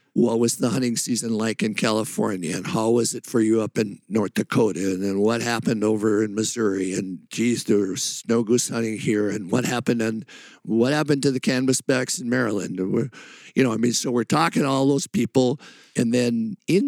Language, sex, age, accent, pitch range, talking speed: English, male, 50-69, American, 110-135 Hz, 205 wpm